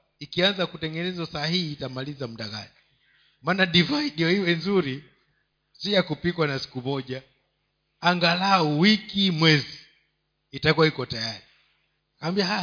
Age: 50-69